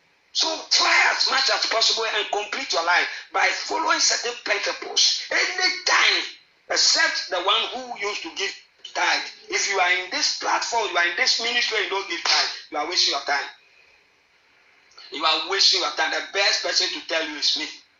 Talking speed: 190 wpm